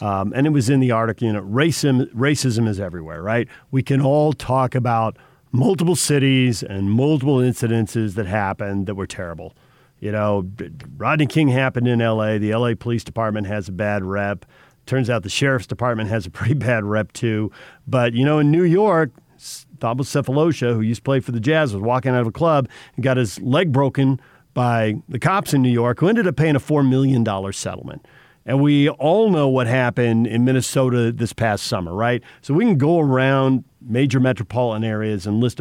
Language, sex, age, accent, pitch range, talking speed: English, male, 50-69, American, 110-140 Hz, 195 wpm